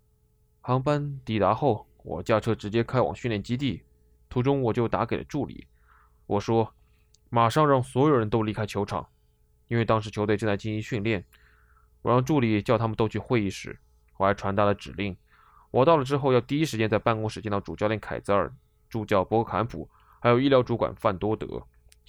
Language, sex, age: Chinese, male, 20-39